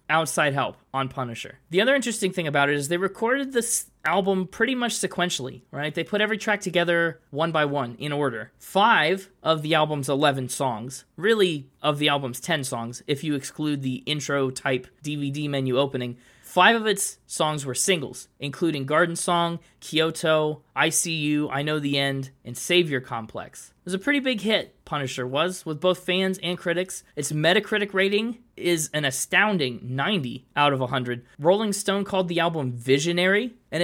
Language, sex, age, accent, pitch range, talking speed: English, male, 20-39, American, 140-180 Hz, 175 wpm